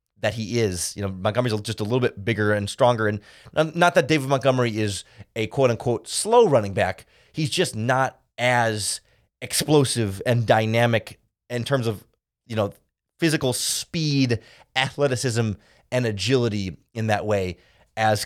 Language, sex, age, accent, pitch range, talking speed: English, male, 30-49, American, 110-140 Hz, 150 wpm